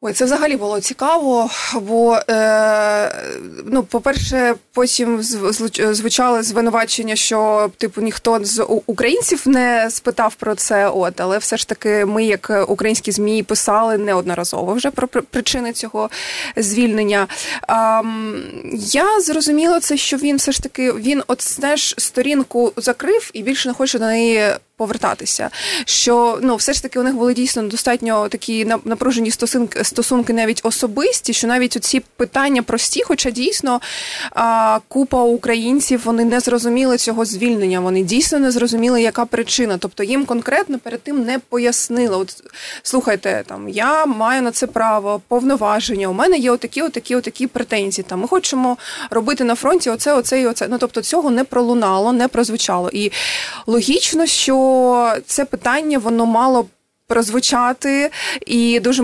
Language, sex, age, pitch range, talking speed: Ukrainian, female, 20-39, 220-260 Hz, 145 wpm